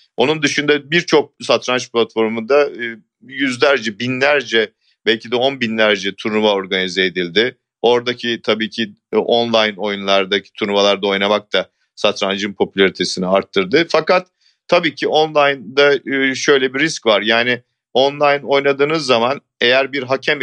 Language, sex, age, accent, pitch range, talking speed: Turkish, male, 40-59, native, 110-140 Hz, 120 wpm